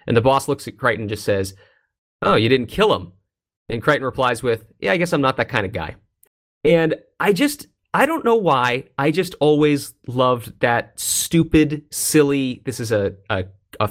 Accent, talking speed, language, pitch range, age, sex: American, 200 wpm, English, 105-150 Hz, 30-49, male